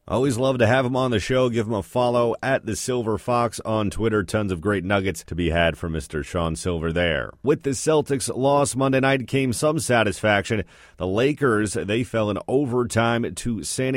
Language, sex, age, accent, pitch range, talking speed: English, male, 30-49, American, 95-115 Hz, 200 wpm